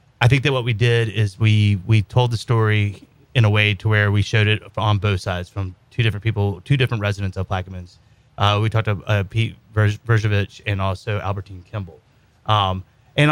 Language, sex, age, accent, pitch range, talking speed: English, male, 30-49, American, 100-115 Hz, 205 wpm